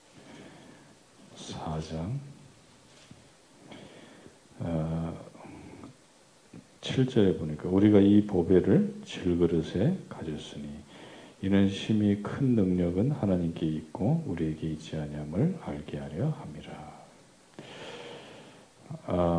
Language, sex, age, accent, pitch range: Korean, male, 50-69, native, 80-110 Hz